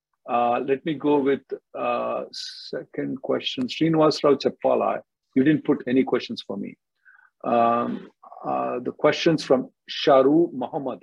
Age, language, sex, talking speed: 50-69, English, male, 135 wpm